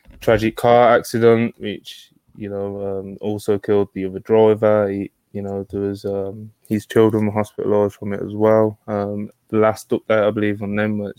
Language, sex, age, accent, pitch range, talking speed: English, male, 20-39, British, 100-110 Hz, 190 wpm